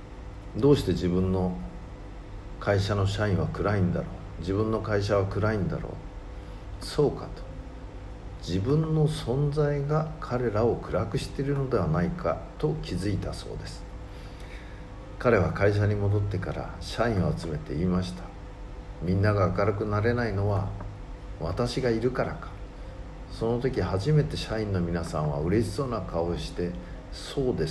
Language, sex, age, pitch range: Japanese, male, 50-69, 90-115 Hz